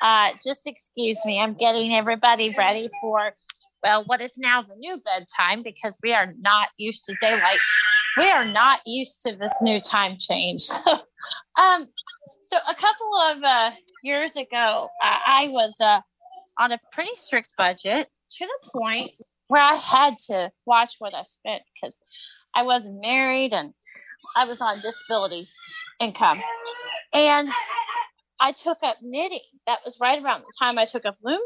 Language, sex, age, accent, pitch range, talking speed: English, female, 30-49, American, 230-345 Hz, 160 wpm